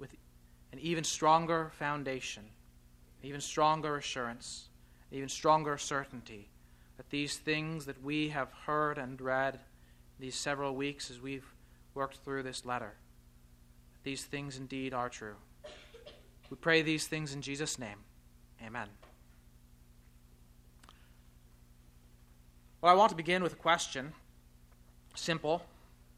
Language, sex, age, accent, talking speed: English, male, 30-49, American, 125 wpm